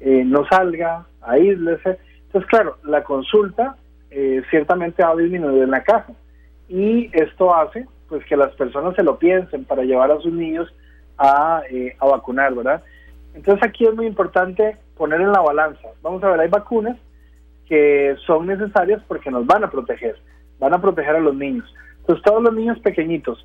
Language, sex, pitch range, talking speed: Spanish, male, 140-200 Hz, 180 wpm